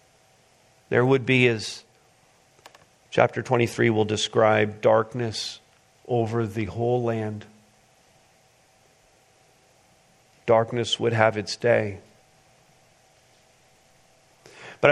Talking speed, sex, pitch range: 75 wpm, male, 130-165 Hz